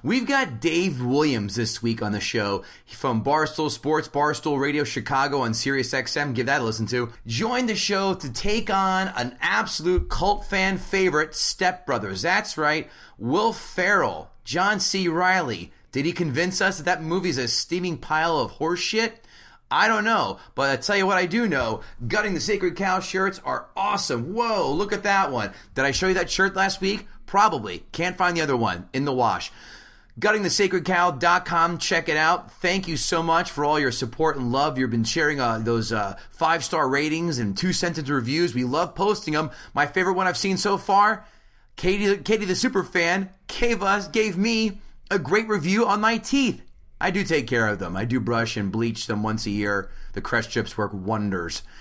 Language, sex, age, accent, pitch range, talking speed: English, male, 30-49, American, 125-195 Hz, 195 wpm